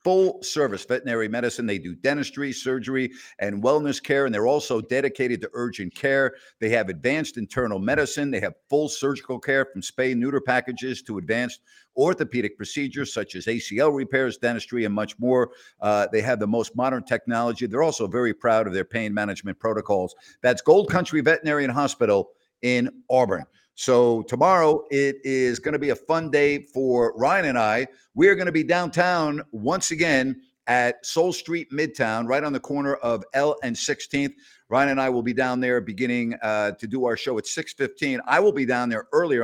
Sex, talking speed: male, 185 wpm